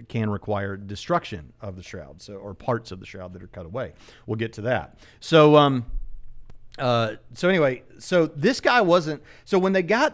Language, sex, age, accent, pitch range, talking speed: English, male, 40-59, American, 110-140 Hz, 180 wpm